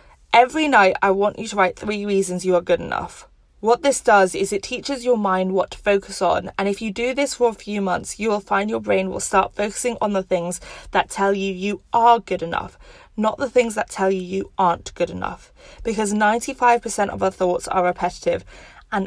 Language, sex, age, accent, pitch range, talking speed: English, female, 20-39, British, 180-215 Hz, 220 wpm